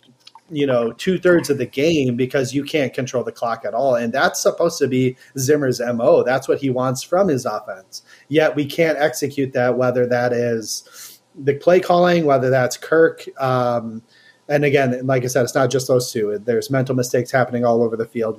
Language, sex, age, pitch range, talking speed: English, male, 30-49, 125-150 Hz, 200 wpm